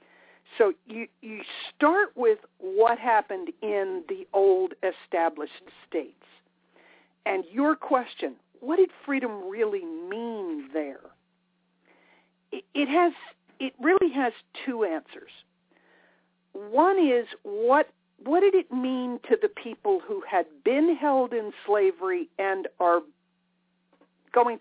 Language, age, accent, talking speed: English, 50-69, American, 115 wpm